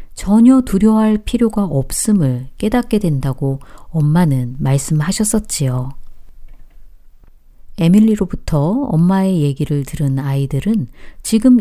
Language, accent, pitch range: Korean, native, 140-205 Hz